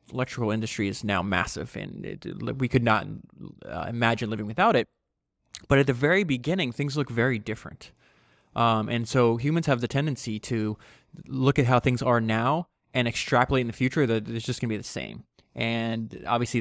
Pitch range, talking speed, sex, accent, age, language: 115-140 Hz, 190 wpm, male, American, 20-39, English